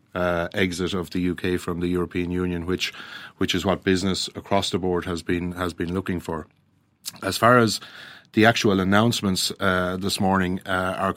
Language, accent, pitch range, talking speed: English, Irish, 90-100 Hz, 185 wpm